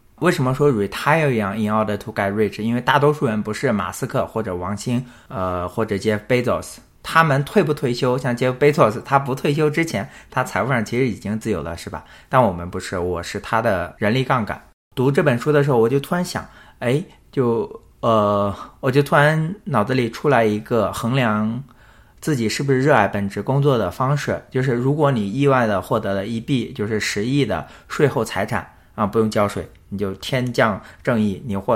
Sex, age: male, 20-39